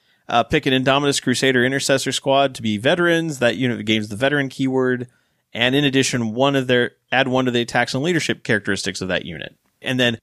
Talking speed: 205 wpm